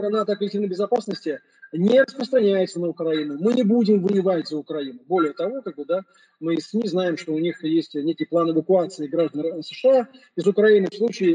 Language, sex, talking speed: Russian, male, 185 wpm